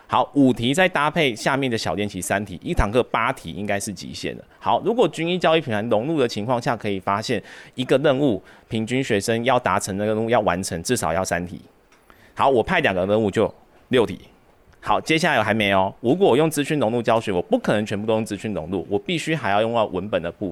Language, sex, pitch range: Chinese, male, 95-130 Hz